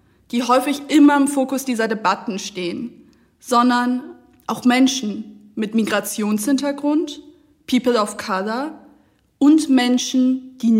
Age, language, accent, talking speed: 20-39, English, German, 105 wpm